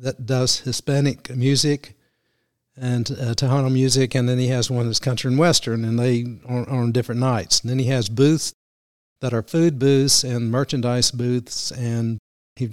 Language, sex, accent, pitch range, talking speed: English, male, American, 115-130 Hz, 180 wpm